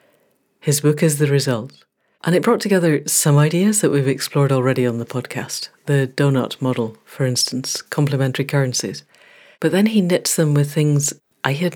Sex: female